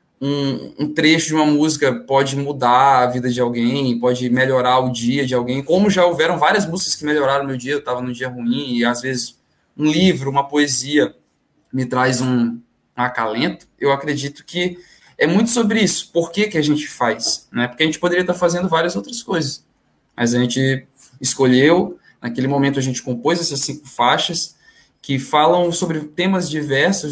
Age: 20-39